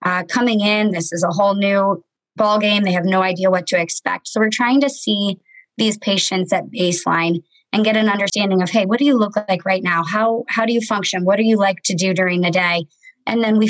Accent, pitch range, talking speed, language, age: American, 185-215 Hz, 245 wpm, English, 20-39